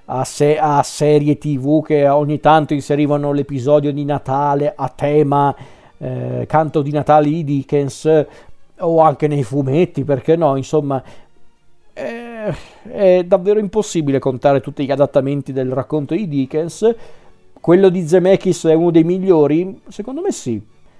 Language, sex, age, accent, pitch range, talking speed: Italian, male, 40-59, native, 135-155 Hz, 135 wpm